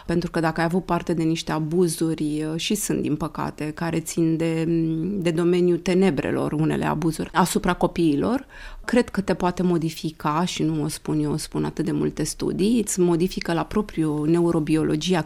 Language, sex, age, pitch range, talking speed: Romanian, female, 30-49, 170-205 Hz, 170 wpm